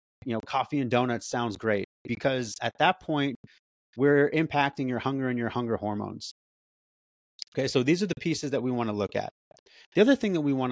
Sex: male